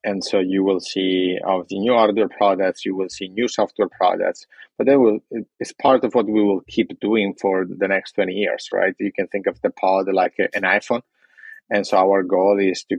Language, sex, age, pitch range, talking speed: English, male, 30-49, 95-100 Hz, 225 wpm